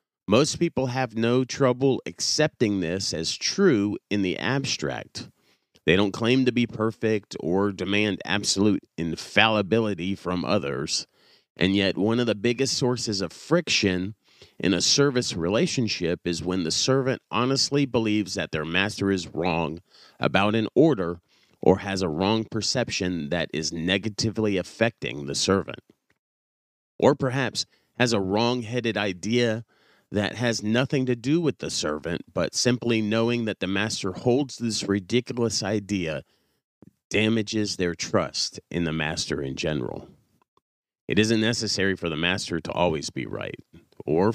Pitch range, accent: 95-120 Hz, American